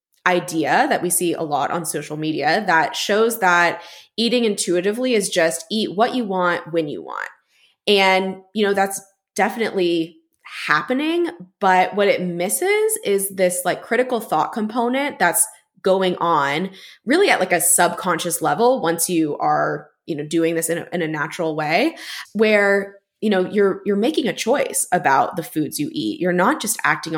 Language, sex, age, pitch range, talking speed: English, female, 20-39, 170-220 Hz, 170 wpm